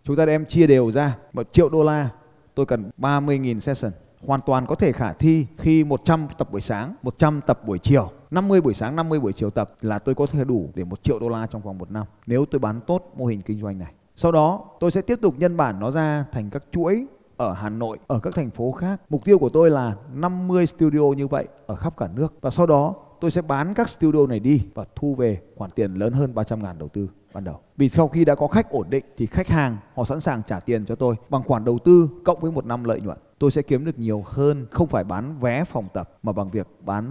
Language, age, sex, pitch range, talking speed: Vietnamese, 20-39, male, 110-160 Hz, 255 wpm